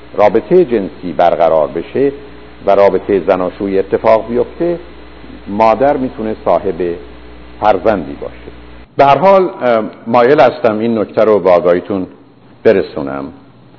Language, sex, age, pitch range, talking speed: Persian, male, 50-69, 90-125 Hz, 100 wpm